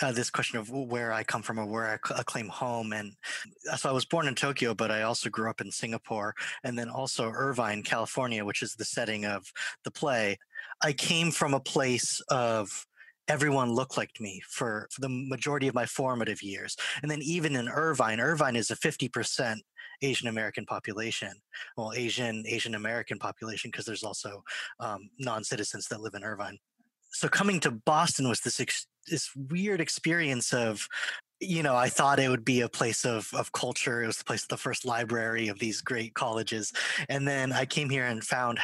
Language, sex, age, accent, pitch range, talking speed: English, male, 20-39, American, 110-140 Hz, 195 wpm